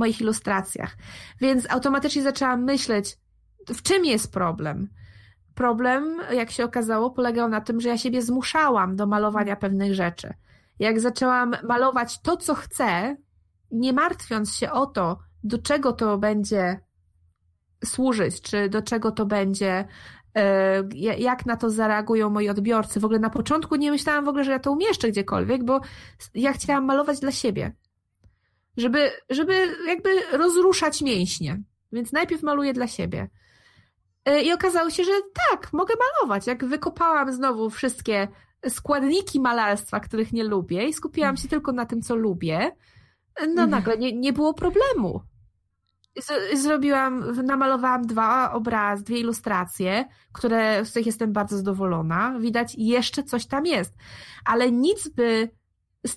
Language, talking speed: Polish, 140 wpm